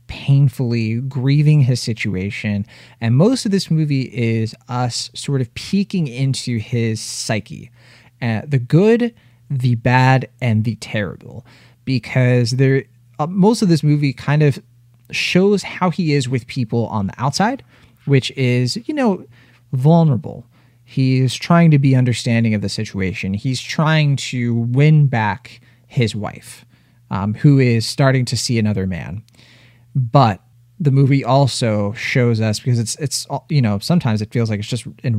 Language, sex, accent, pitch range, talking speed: English, male, American, 115-140 Hz, 155 wpm